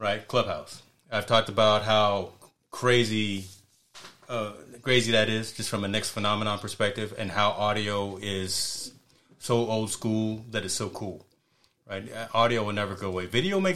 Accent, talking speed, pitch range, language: American, 155 wpm, 100-120 Hz, English